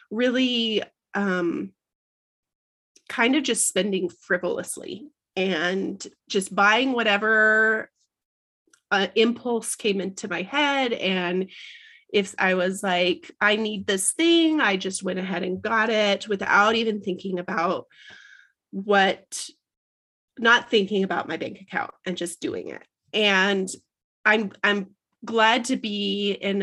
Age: 30-49